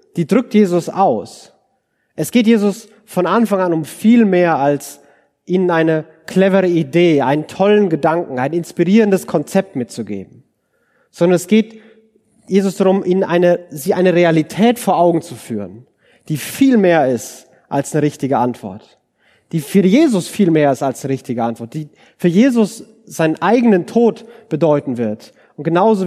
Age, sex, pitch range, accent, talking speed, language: 30-49, male, 145-200 Hz, German, 150 wpm, German